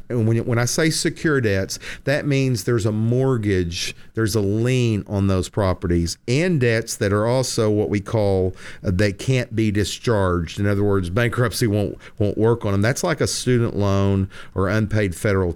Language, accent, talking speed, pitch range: English, American, 185 wpm, 95-125 Hz